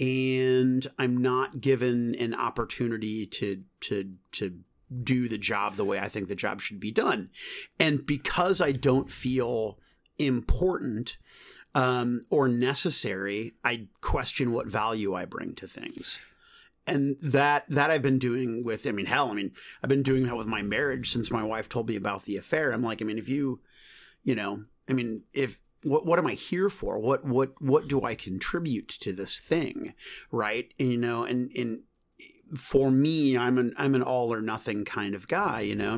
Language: English